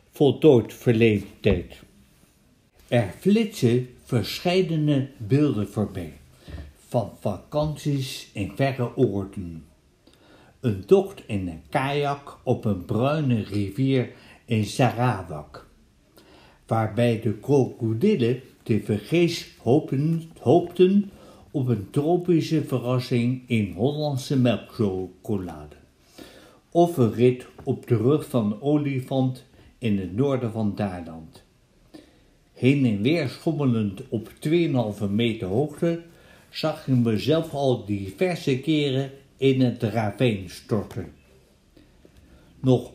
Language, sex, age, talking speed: Dutch, male, 60-79, 95 wpm